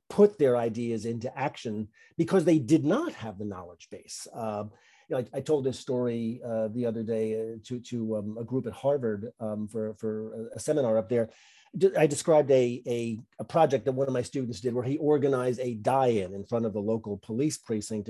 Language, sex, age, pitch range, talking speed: English, male, 40-59, 115-150 Hz, 210 wpm